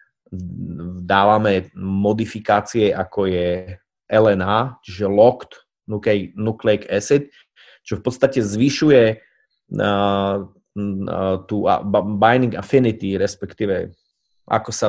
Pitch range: 100-115 Hz